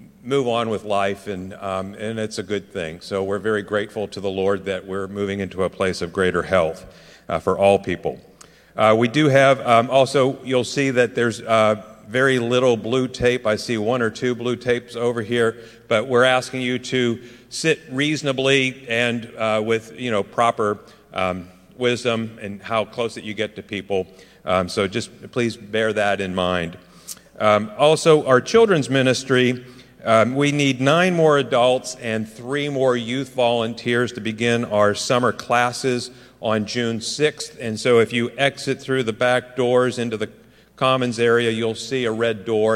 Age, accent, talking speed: 50-69, American, 180 wpm